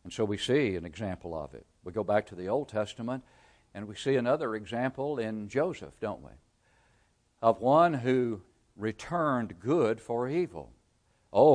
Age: 60-79